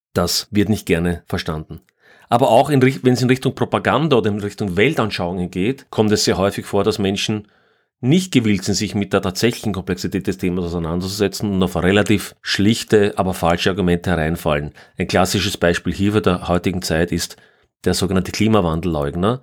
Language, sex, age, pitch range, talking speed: German, male, 30-49, 90-110 Hz, 175 wpm